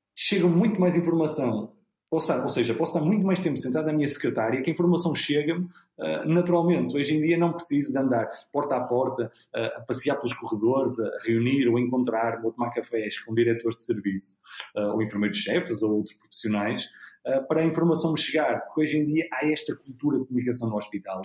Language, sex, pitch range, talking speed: Portuguese, male, 115-145 Hz, 200 wpm